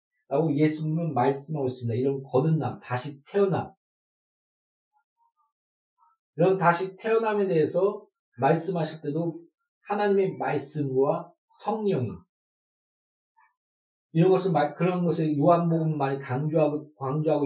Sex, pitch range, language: male, 155-220 Hz, Korean